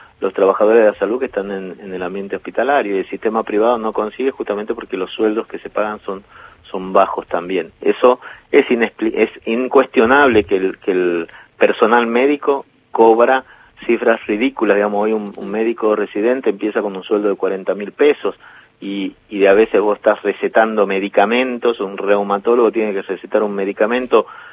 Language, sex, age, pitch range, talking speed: Spanish, male, 40-59, 100-130 Hz, 175 wpm